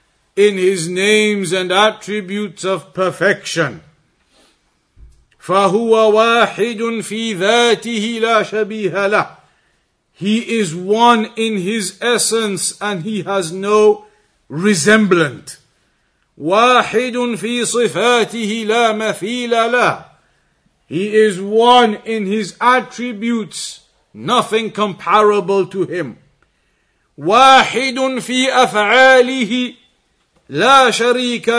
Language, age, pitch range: English, 50-69, 195-235 Hz